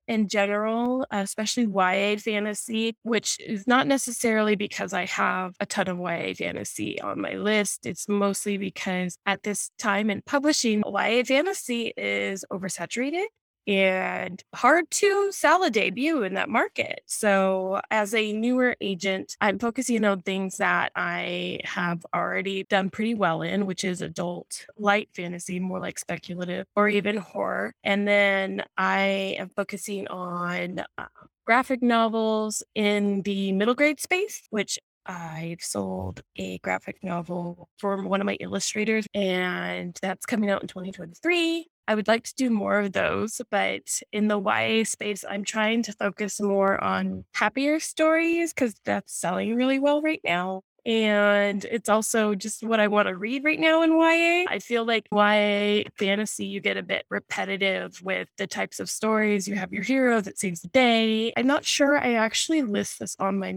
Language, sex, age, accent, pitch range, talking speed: English, female, 10-29, American, 190-230 Hz, 165 wpm